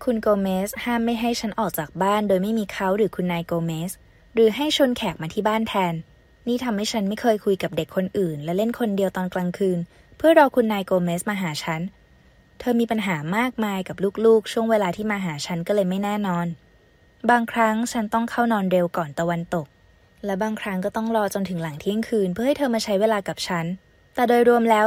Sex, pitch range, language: female, 180-230 Hz, Thai